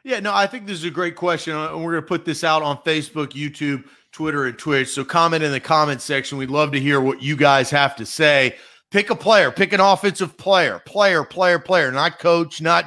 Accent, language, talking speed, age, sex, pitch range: American, English, 240 wpm, 40-59, male, 155-200 Hz